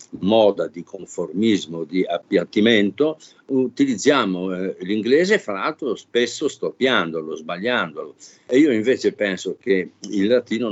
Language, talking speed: Italian, 110 wpm